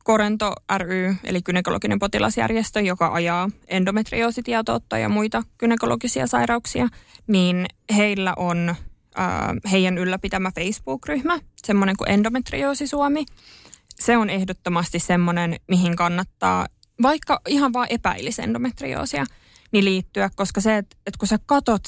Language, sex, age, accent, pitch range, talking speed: Finnish, female, 20-39, native, 175-215 Hz, 110 wpm